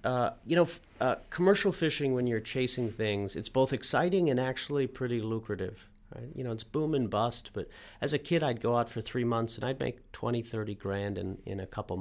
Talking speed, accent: 225 wpm, American